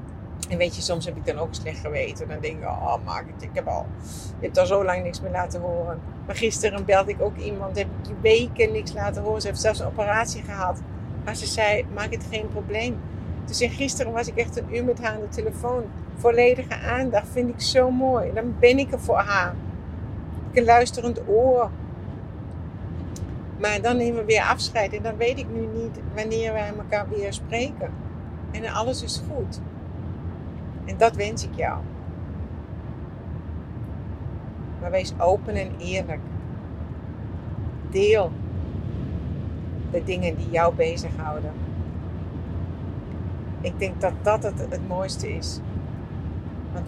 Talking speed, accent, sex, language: 165 wpm, Dutch, female, English